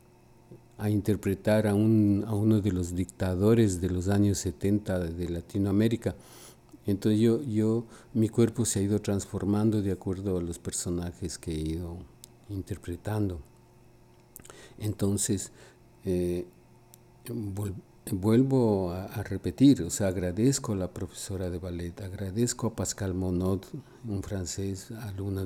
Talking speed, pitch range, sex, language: 130 wpm, 95-110 Hz, male, English